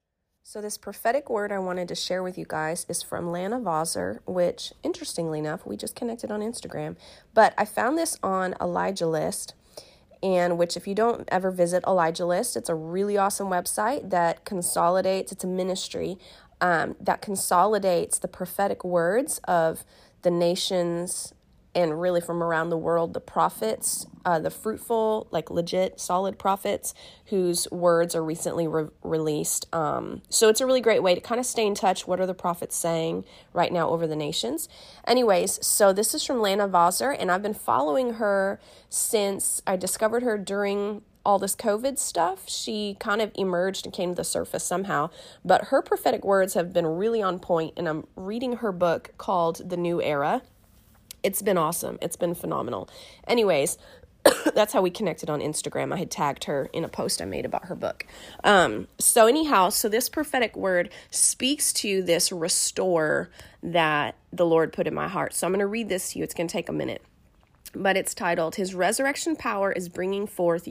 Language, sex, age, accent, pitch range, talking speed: English, female, 30-49, American, 170-210 Hz, 185 wpm